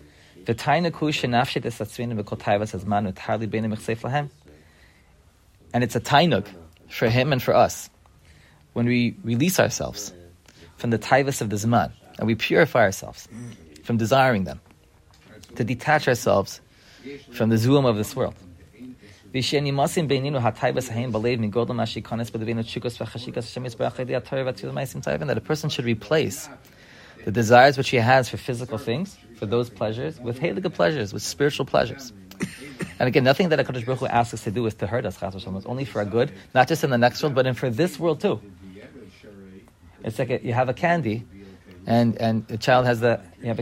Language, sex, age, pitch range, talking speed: English, male, 30-49, 105-130 Hz, 145 wpm